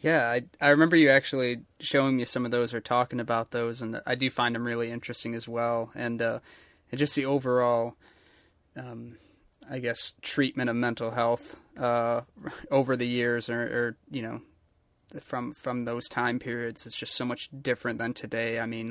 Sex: male